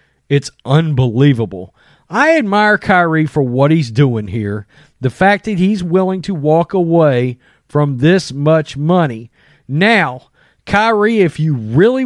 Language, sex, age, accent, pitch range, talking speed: English, male, 40-59, American, 145-210 Hz, 135 wpm